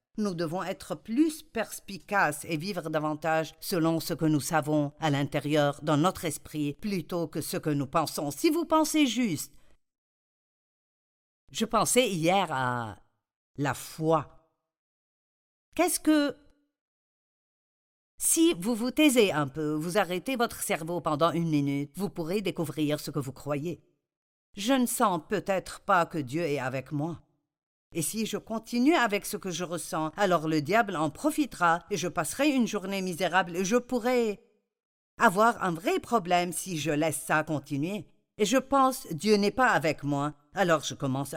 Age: 50-69